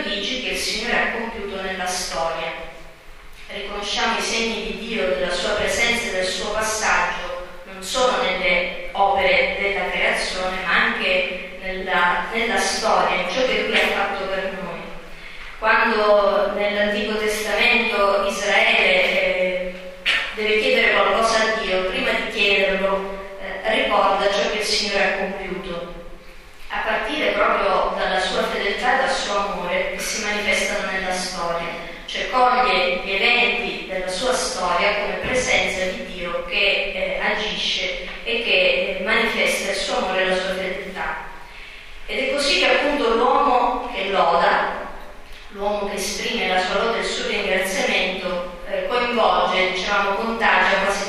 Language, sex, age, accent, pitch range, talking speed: Italian, female, 30-49, native, 185-215 Hz, 135 wpm